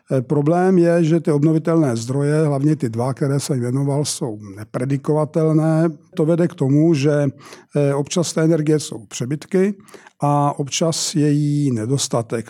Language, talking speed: Czech, 135 wpm